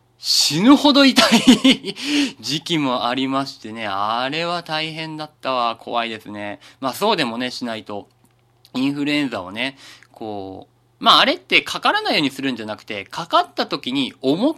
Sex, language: male, Japanese